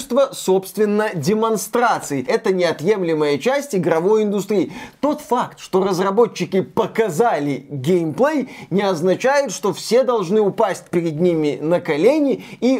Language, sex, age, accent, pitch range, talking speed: Russian, male, 20-39, native, 175-210 Hz, 115 wpm